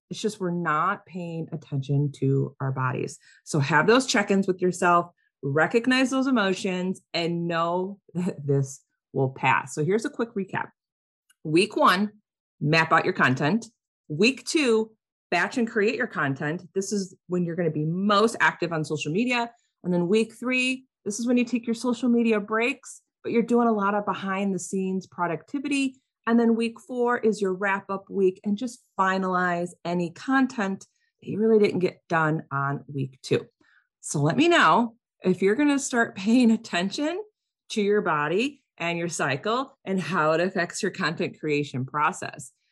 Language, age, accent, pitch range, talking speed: English, 30-49, American, 160-230 Hz, 170 wpm